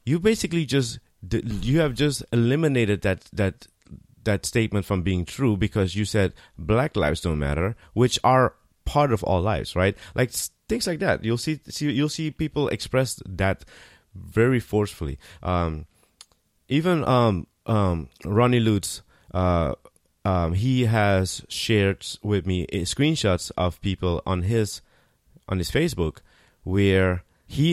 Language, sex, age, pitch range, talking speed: English, male, 30-49, 90-115 Hz, 140 wpm